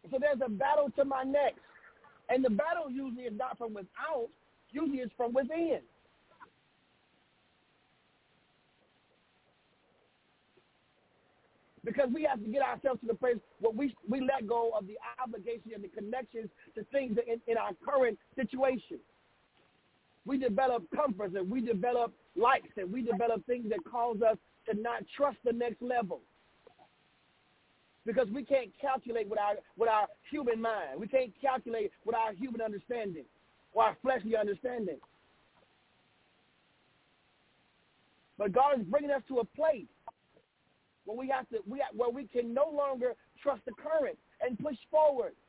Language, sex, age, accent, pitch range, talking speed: English, male, 40-59, American, 230-275 Hz, 150 wpm